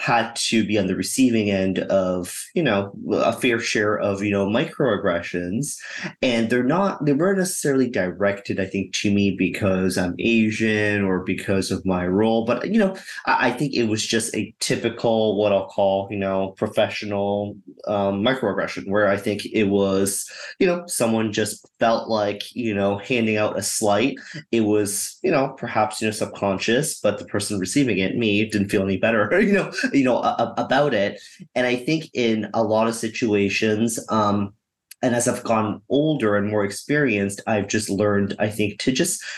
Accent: American